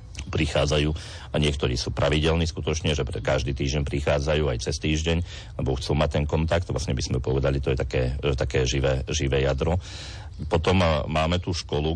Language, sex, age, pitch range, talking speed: Slovak, male, 40-59, 70-85 Hz, 165 wpm